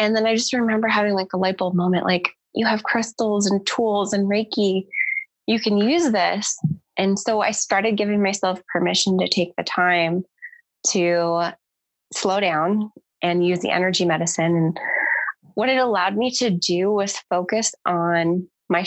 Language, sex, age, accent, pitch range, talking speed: English, female, 20-39, American, 175-215 Hz, 170 wpm